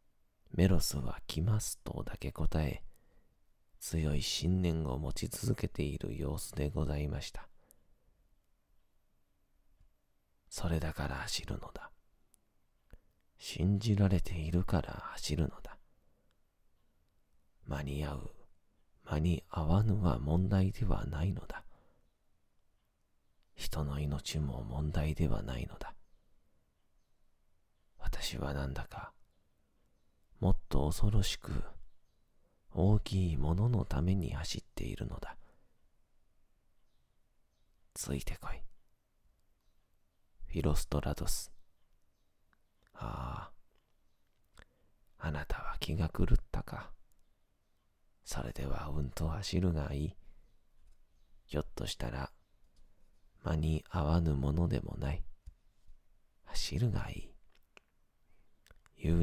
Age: 40-59